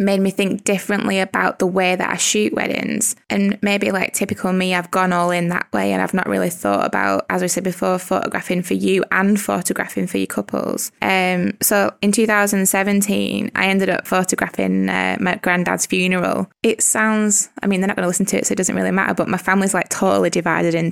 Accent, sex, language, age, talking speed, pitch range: British, female, English, 20-39, 215 wpm, 180-215 Hz